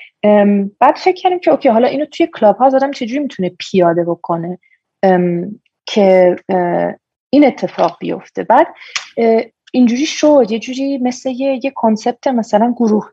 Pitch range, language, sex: 185-225 Hz, Persian, female